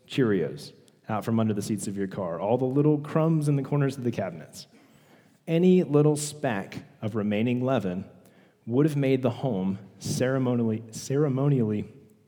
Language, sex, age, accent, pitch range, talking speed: English, male, 40-59, American, 120-160 Hz, 155 wpm